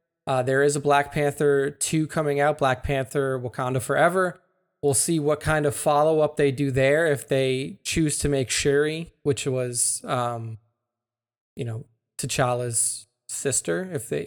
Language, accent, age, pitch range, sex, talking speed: English, American, 20-39, 130-150 Hz, male, 160 wpm